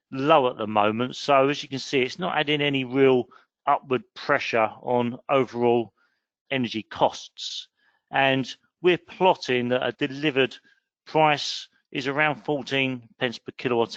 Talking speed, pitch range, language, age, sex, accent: 140 wpm, 120-145 Hz, English, 40-59, male, British